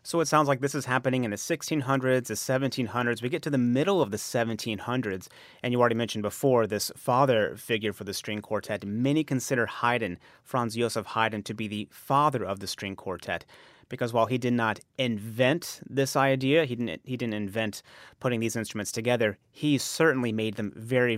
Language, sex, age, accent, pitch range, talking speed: English, male, 30-49, American, 110-135 Hz, 195 wpm